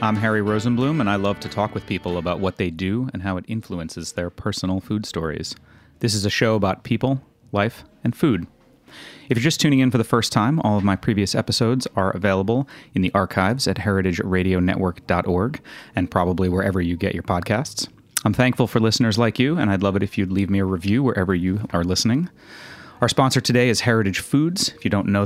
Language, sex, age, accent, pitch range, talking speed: English, male, 30-49, American, 95-115 Hz, 210 wpm